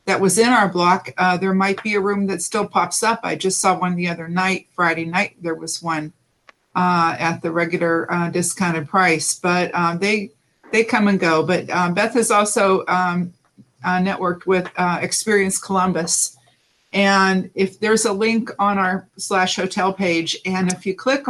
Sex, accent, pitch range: female, American, 165-205 Hz